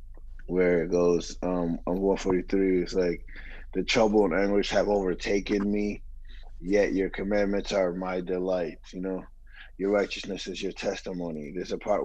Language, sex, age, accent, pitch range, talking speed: English, male, 20-39, American, 90-100 Hz, 155 wpm